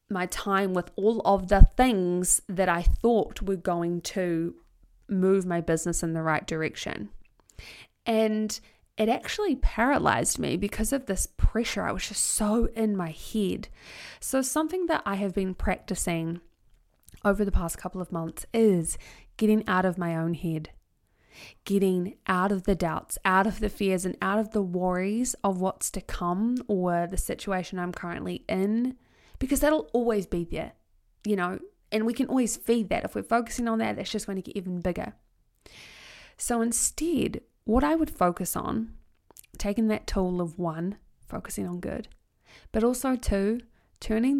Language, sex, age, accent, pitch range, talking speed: English, female, 20-39, Australian, 180-225 Hz, 170 wpm